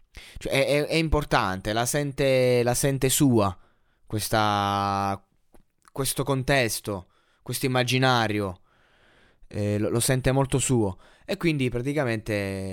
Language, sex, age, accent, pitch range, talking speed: Italian, male, 20-39, native, 105-135 Hz, 110 wpm